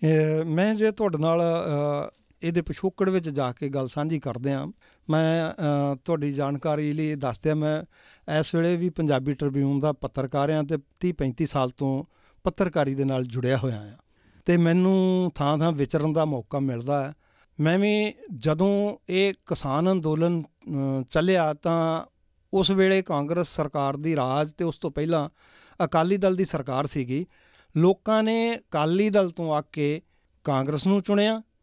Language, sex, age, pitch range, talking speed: Punjabi, male, 50-69, 145-190 Hz, 150 wpm